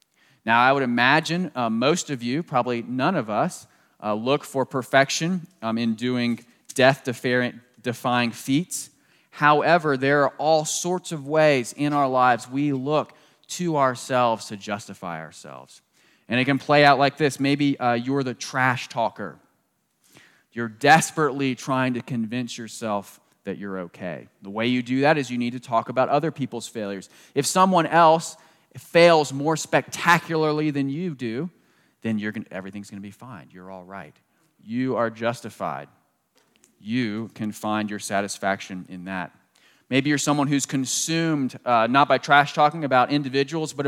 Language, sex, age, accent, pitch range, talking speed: English, male, 30-49, American, 120-150 Hz, 160 wpm